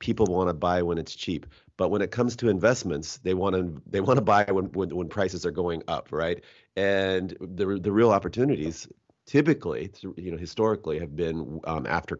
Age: 30-49